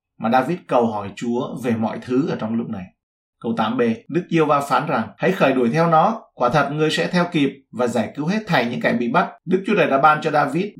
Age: 20-39